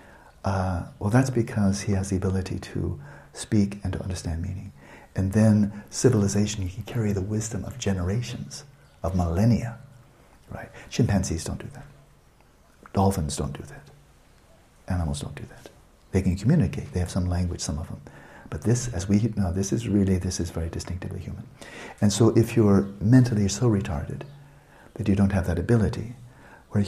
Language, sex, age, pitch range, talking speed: English, male, 60-79, 95-120 Hz, 170 wpm